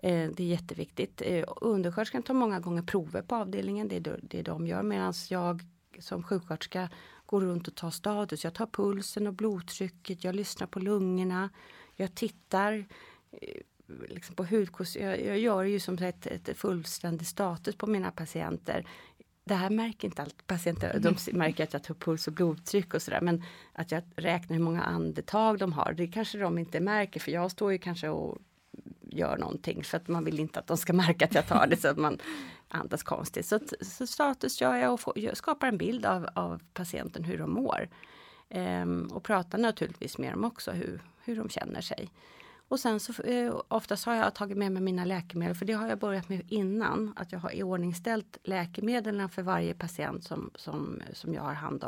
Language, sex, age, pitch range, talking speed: Swedish, female, 30-49, 170-210 Hz, 190 wpm